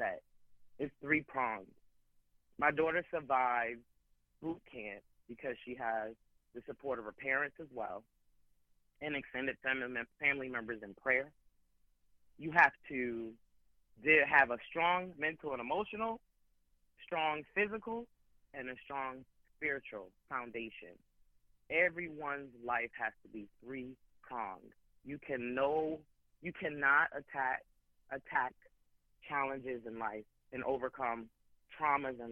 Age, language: 30-49, English